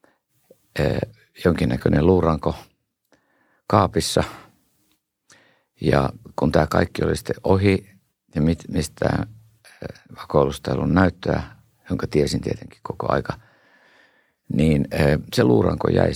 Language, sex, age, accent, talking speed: Finnish, male, 50-69, native, 90 wpm